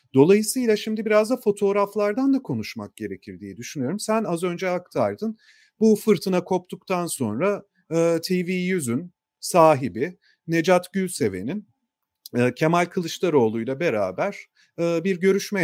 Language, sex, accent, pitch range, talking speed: Turkish, male, native, 130-185 Hz, 105 wpm